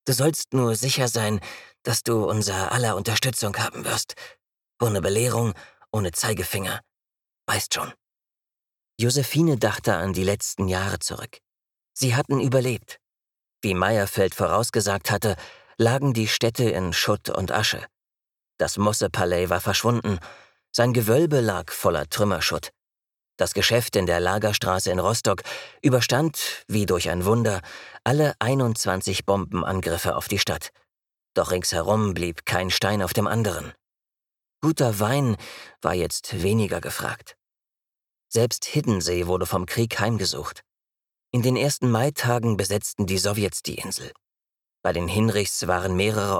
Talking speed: 130 wpm